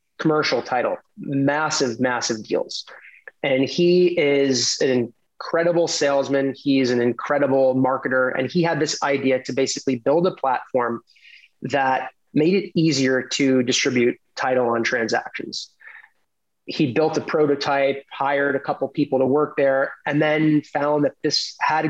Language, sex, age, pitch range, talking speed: English, male, 20-39, 130-150 Hz, 140 wpm